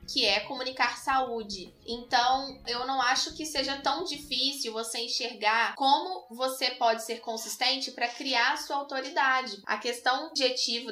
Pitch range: 215-265 Hz